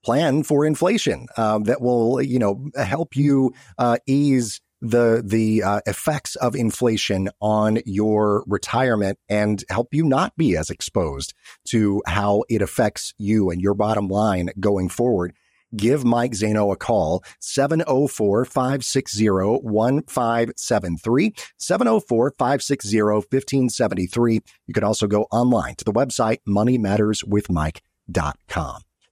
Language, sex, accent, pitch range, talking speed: English, male, American, 105-135 Hz, 115 wpm